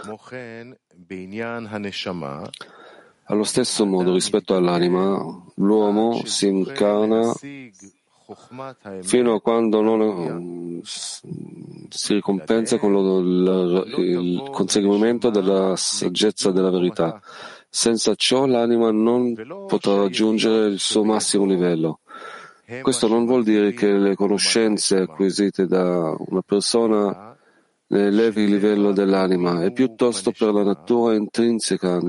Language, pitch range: Italian, 95-115 Hz